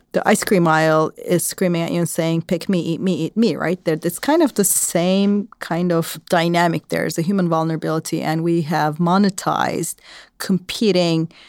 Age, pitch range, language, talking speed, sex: 40-59, 165-205 Hz, English, 190 wpm, female